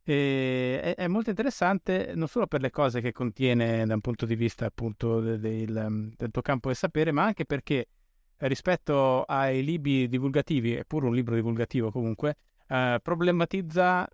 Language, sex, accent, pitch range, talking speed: Italian, male, native, 125-155 Hz, 160 wpm